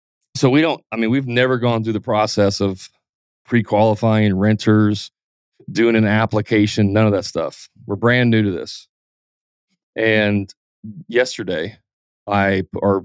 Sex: male